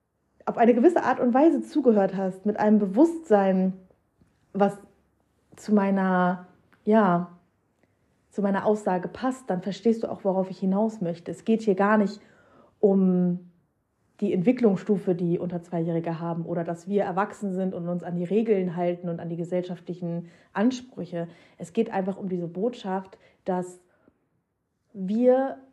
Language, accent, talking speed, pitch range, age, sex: German, German, 145 wpm, 180-220 Hz, 30-49, female